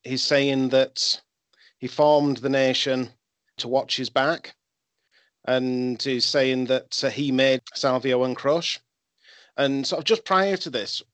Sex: male